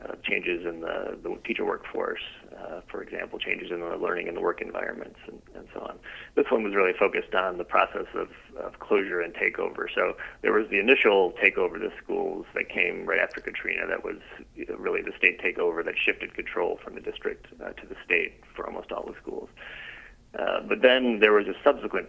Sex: male